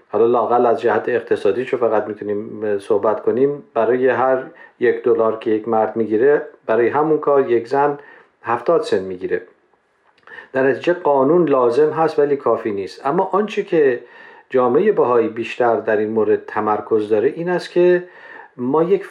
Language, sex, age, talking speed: Persian, male, 50-69, 155 wpm